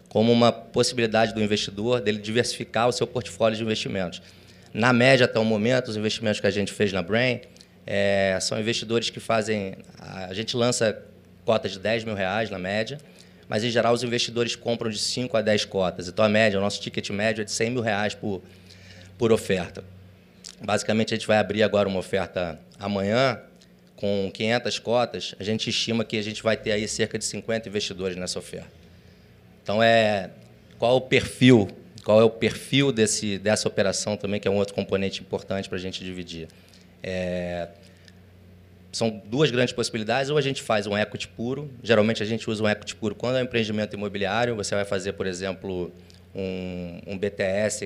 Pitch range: 95-115 Hz